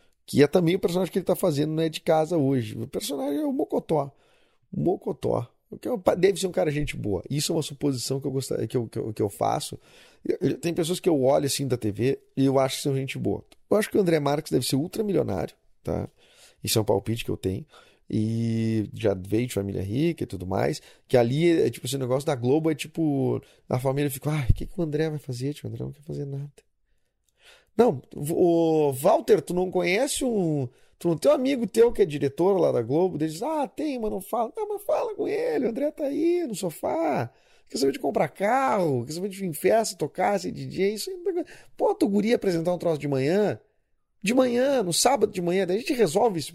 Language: Portuguese